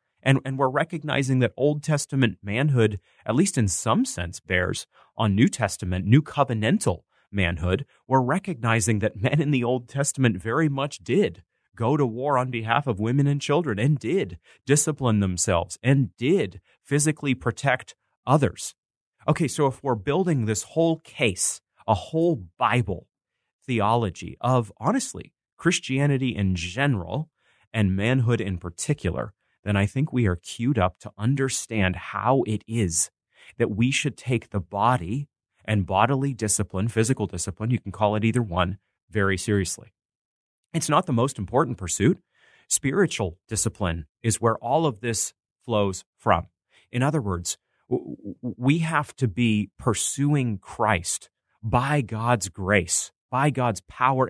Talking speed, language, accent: 145 wpm, English, American